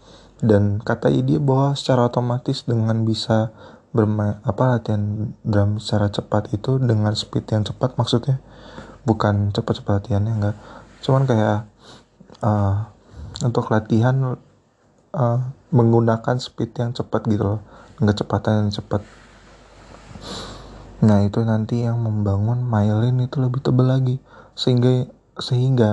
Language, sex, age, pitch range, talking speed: Indonesian, male, 20-39, 105-125 Hz, 120 wpm